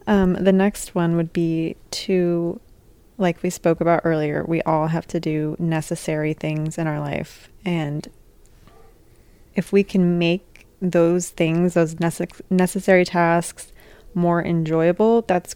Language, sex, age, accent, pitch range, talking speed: English, female, 20-39, American, 160-180 Hz, 135 wpm